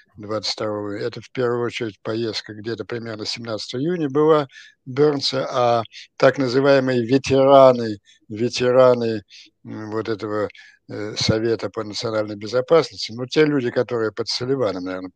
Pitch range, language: 110-135 Hz, Russian